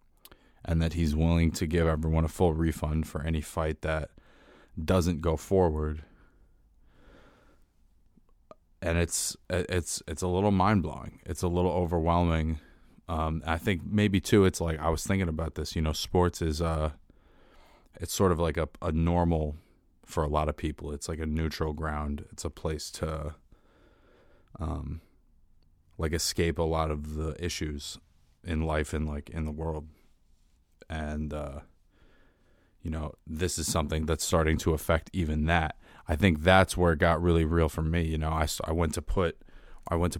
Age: 20-39